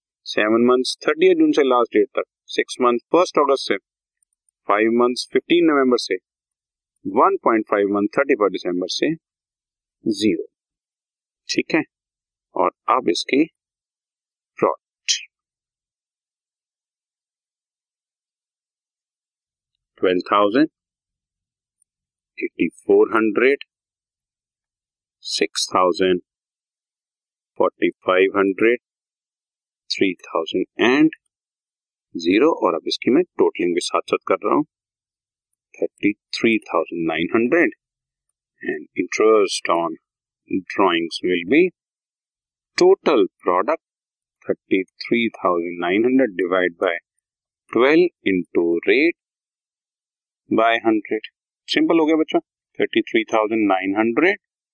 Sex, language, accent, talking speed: male, Hindi, native, 95 wpm